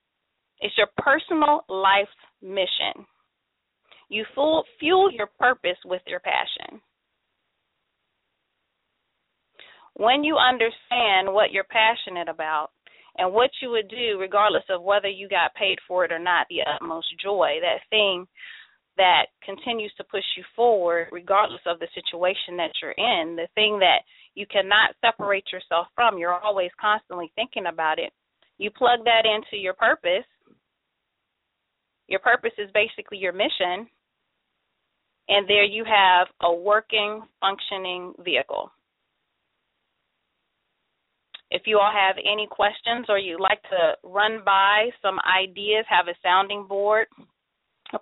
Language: English